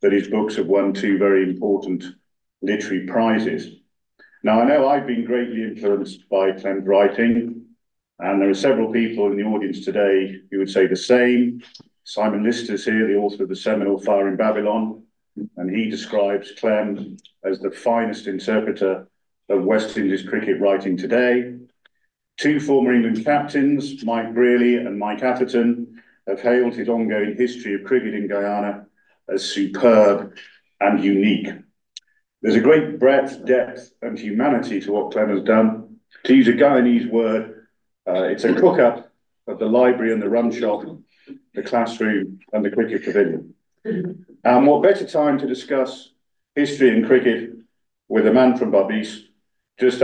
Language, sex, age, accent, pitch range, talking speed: English, male, 50-69, British, 100-125 Hz, 155 wpm